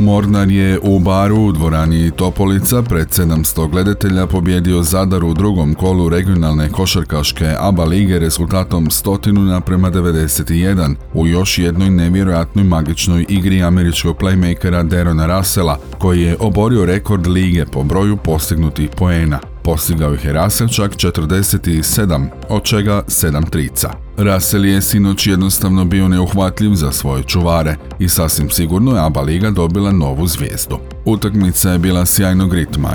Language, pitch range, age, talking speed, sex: Croatian, 80-95 Hz, 40-59, 135 wpm, male